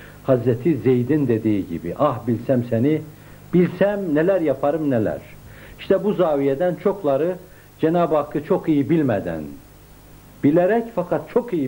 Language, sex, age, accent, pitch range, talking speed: Turkish, male, 60-79, native, 140-195 Hz, 125 wpm